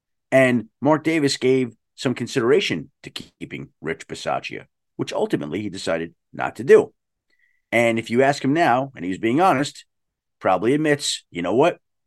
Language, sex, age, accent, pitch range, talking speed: English, male, 40-59, American, 115-150 Hz, 160 wpm